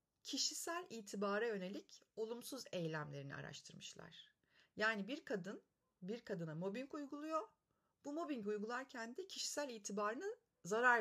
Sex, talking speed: female, 110 wpm